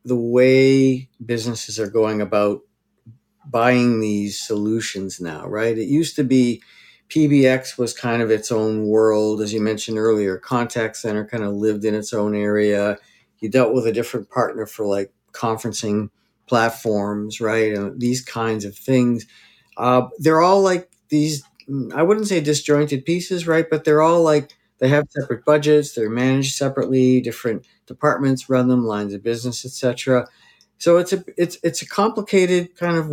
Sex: male